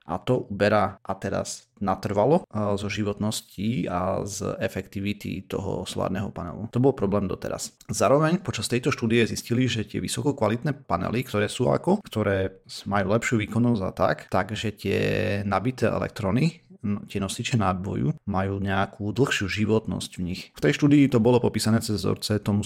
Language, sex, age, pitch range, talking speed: Slovak, male, 30-49, 100-120 Hz, 155 wpm